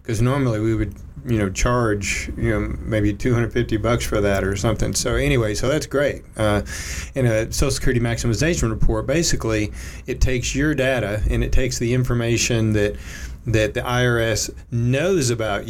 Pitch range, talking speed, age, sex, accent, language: 100-125 Hz, 170 wpm, 40-59, male, American, English